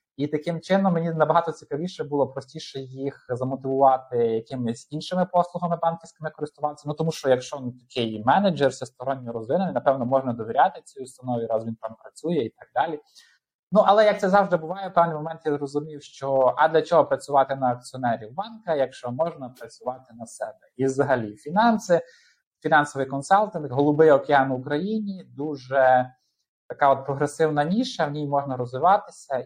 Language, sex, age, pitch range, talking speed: Ukrainian, male, 20-39, 130-165 Hz, 160 wpm